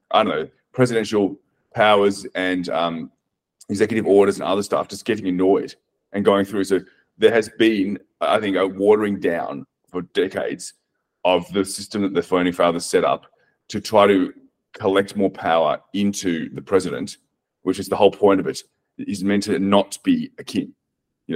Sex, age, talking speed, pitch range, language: male, 30-49, 175 wpm, 90-110 Hz, English